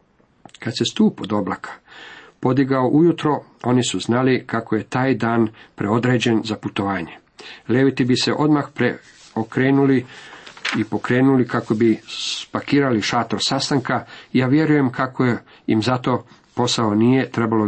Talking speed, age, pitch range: 130 wpm, 50-69, 115-140 Hz